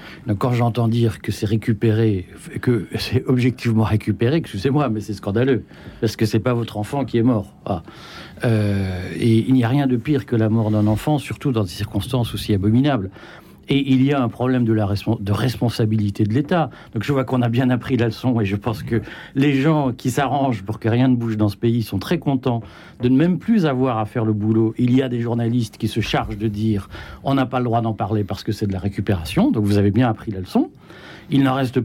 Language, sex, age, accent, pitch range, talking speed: French, male, 60-79, French, 110-145 Hz, 240 wpm